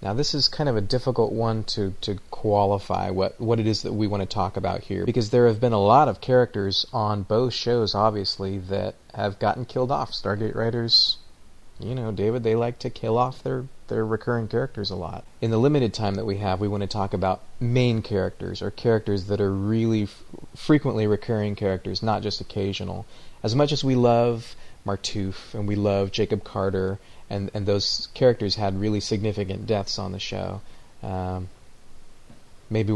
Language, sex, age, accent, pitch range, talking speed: English, male, 30-49, American, 100-115 Hz, 190 wpm